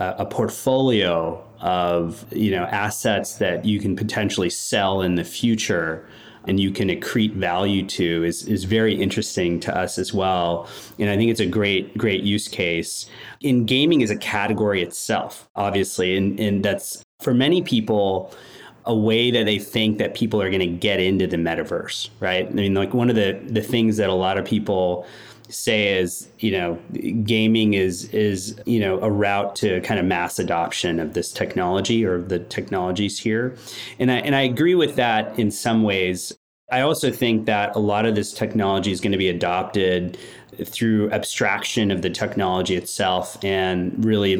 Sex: male